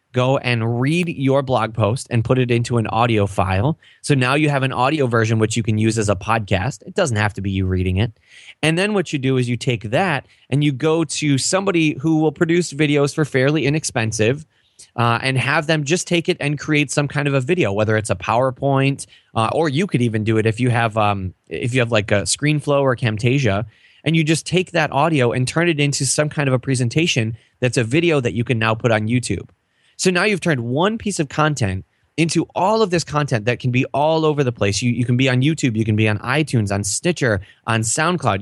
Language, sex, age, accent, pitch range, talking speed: English, male, 20-39, American, 110-150 Hz, 235 wpm